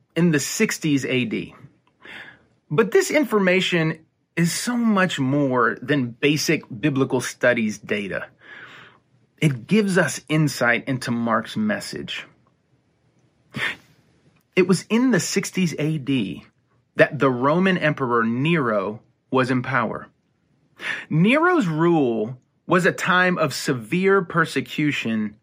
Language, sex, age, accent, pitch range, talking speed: English, male, 30-49, American, 130-190 Hz, 105 wpm